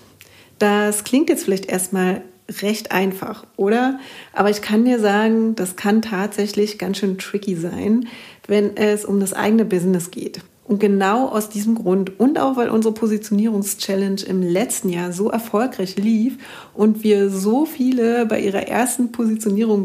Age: 40-59